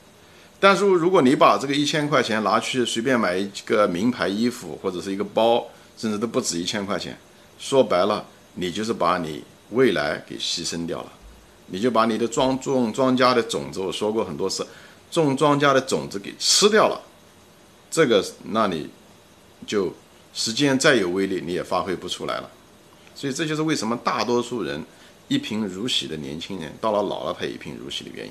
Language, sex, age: Chinese, male, 50-69